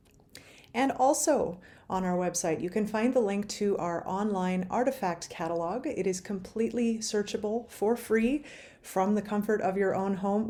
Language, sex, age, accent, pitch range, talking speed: English, female, 30-49, American, 175-220 Hz, 160 wpm